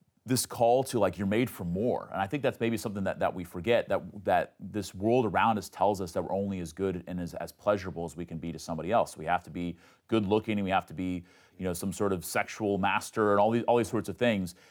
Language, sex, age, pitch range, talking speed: English, male, 30-49, 90-115 Hz, 275 wpm